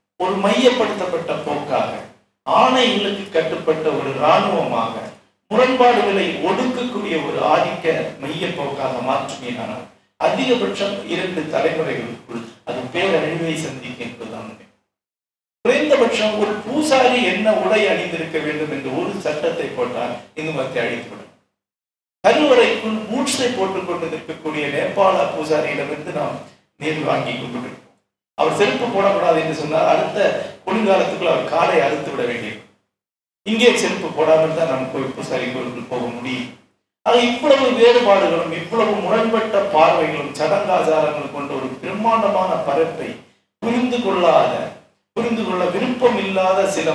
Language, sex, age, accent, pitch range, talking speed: Tamil, male, 50-69, native, 155-230 Hz, 100 wpm